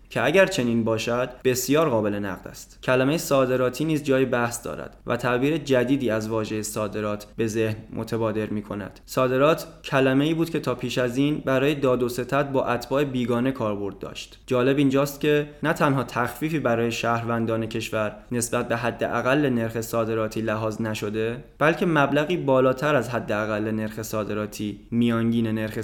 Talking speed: 160 wpm